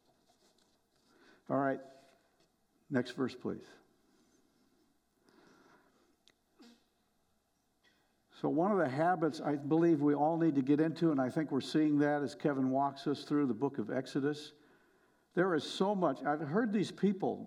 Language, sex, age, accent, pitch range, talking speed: English, male, 60-79, American, 145-195 Hz, 140 wpm